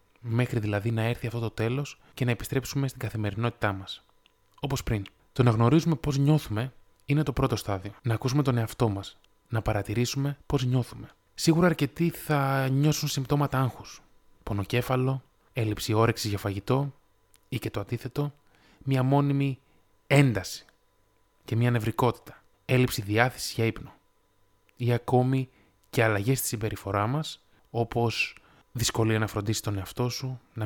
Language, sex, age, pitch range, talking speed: Greek, male, 20-39, 105-135 Hz, 135 wpm